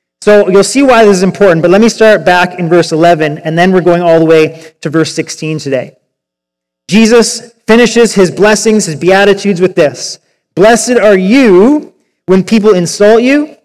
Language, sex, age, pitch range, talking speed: English, male, 30-49, 185-230 Hz, 180 wpm